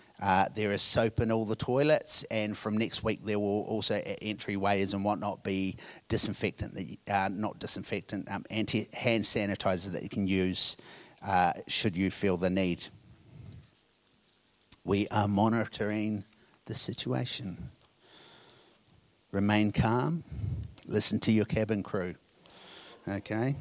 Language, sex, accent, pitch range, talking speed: English, male, Australian, 100-115 Hz, 135 wpm